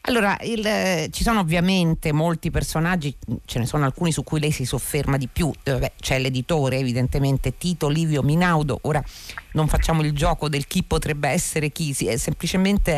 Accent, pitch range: native, 125-175 Hz